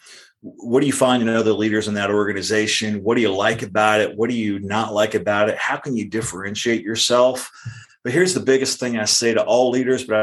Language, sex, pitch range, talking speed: English, male, 110-125 Hz, 230 wpm